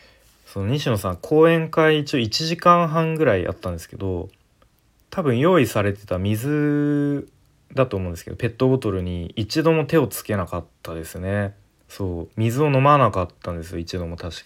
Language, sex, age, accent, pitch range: Japanese, male, 20-39, native, 90-130 Hz